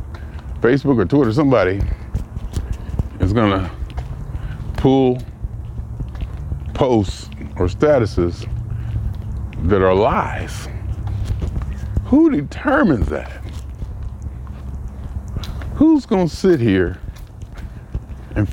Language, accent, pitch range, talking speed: English, American, 85-120 Hz, 75 wpm